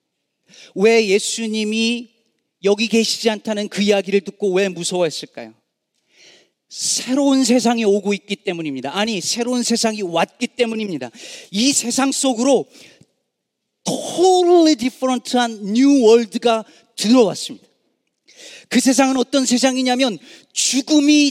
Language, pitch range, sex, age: Korean, 175-260 Hz, male, 40-59